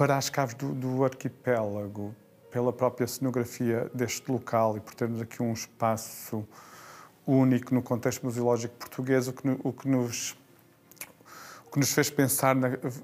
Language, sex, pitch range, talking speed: Portuguese, male, 120-135 Hz, 155 wpm